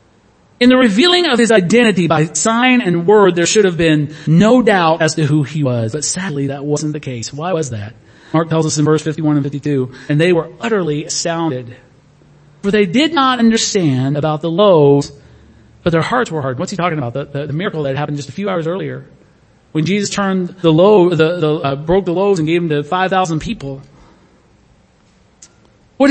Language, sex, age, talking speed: English, male, 40-59, 205 wpm